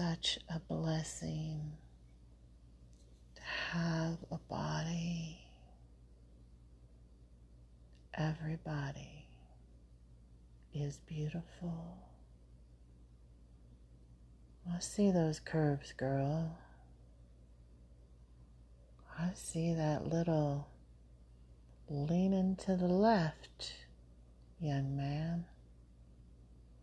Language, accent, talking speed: English, American, 55 wpm